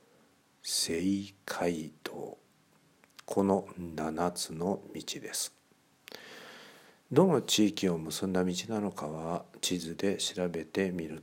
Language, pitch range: Japanese, 85-95 Hz